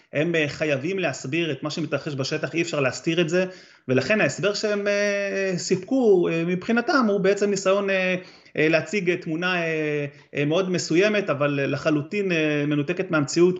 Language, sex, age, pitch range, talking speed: Hebrew, male, 30-49, 135-175 Hz, 155 wpm